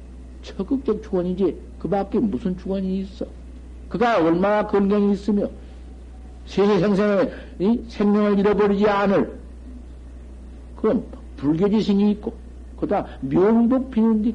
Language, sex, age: Korean, male, 60-79